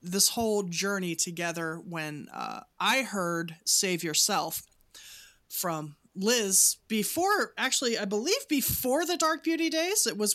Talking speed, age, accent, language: 135 wpm, 30-49, American, English